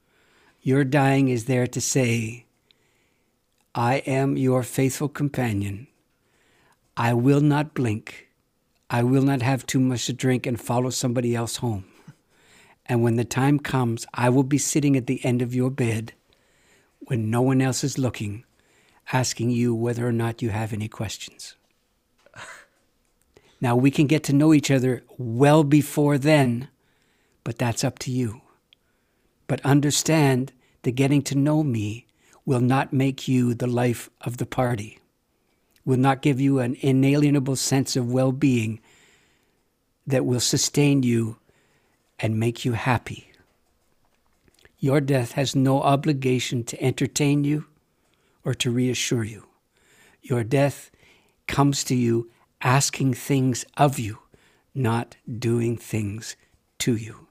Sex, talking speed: male, 140 wpm